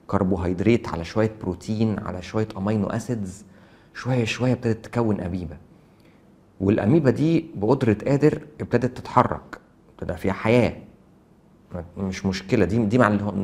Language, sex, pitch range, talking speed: English, male, 95-125 Hz, 120 wpm